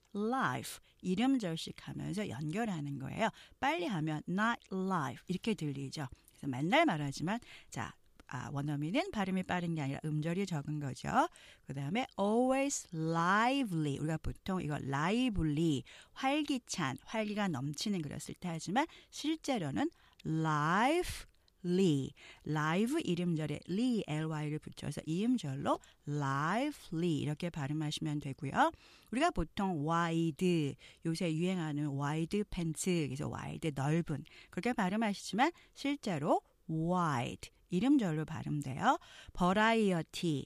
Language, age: Korean, 40-59